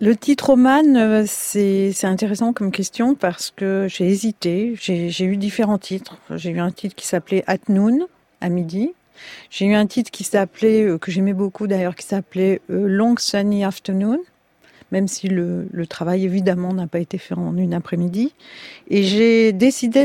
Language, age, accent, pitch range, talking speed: French, 50-69, French, 185-220 Hz, 175 wpm